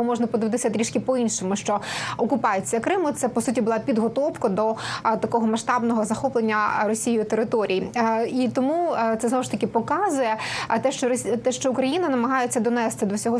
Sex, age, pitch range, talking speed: female, 20-39, 220-255 Hz, 145 wpm